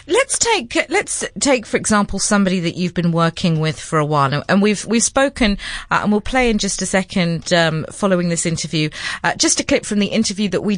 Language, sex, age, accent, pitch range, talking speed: English, female, 30-49, British, 170-240 Hz, 225 wpm